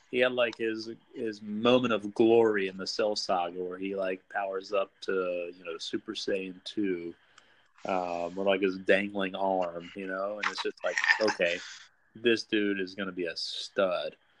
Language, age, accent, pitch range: English, 30-49, American, 95-110 Hz